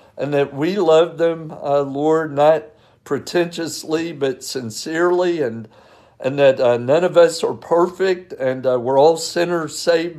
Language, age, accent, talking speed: English, 60-79, American, 155 wpm